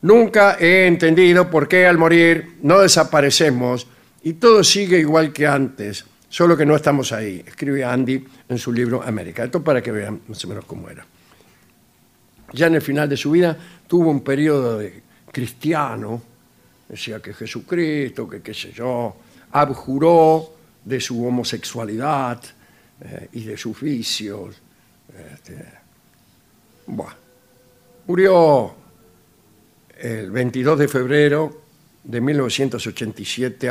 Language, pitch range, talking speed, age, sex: Spanish, 115-155 Hz, 130 wpm, 60-79, male